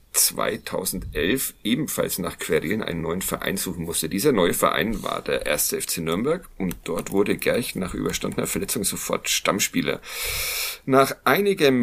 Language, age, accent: German, 40-59, German